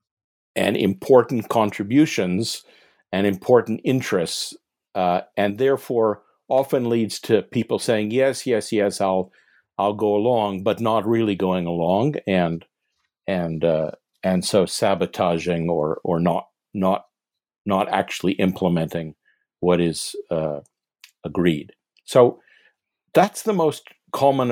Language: English